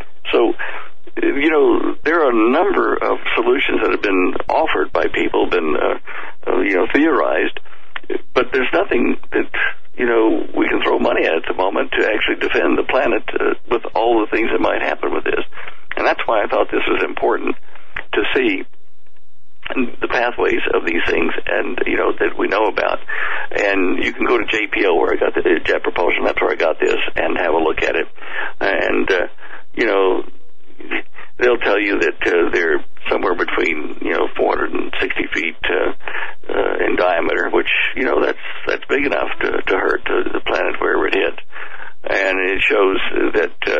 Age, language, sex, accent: 60-79, English, male, American